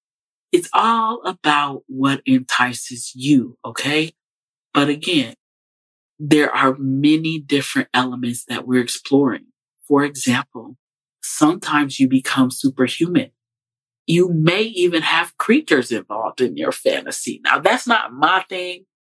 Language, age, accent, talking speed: English, 40-59, American, 115 wpm